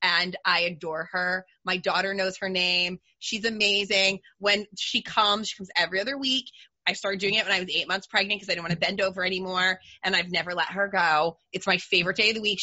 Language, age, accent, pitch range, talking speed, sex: English, 20-39, American, 185-245 Hz, 240 wpm, female